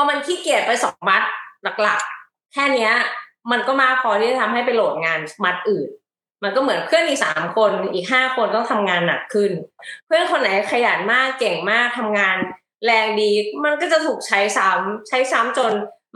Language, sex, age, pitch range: Thai, female, 20-39, 205-265 Hz